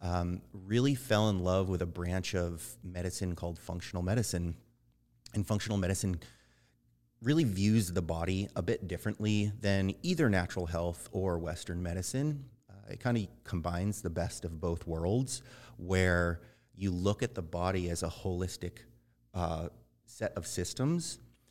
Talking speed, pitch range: 150 wpm, 90-120 Hz